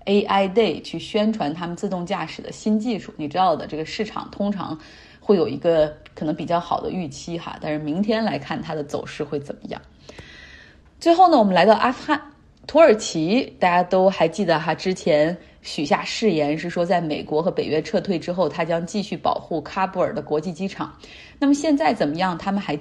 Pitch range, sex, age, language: 160-220 Hz, female, 20-39, Chinese